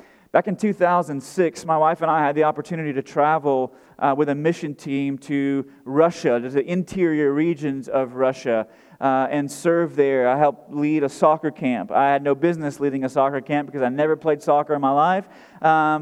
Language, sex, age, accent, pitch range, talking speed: English, male, 30-49, American, 145-175 Hz, 195 wpm